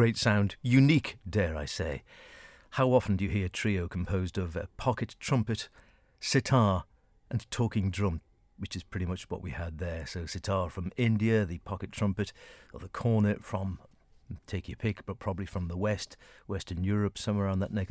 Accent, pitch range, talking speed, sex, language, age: British, 90-110 Hz, 190 wpm, male, English, 50-69